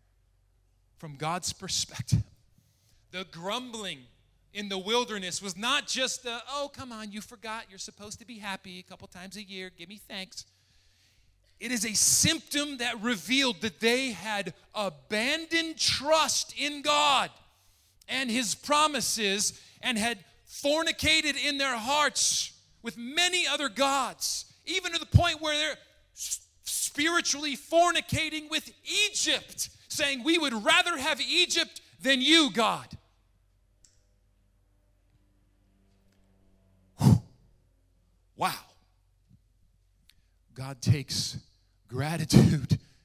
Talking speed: 110 wpm